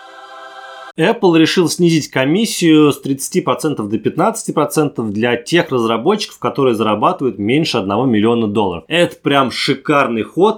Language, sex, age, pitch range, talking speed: Russian, male, 20-39, 120-170 Hz, 120 wpm